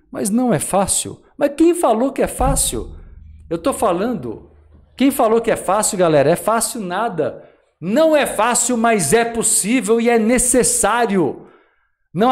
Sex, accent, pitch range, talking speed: male, Brazilian, 150-225 Hz, 155 wpm